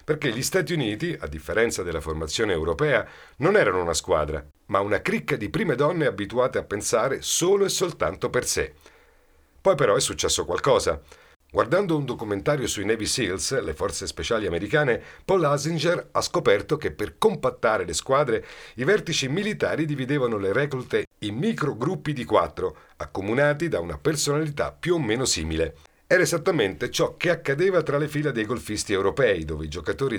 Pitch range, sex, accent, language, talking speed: 110-175 Hz, male, native, Italian, 165 wpm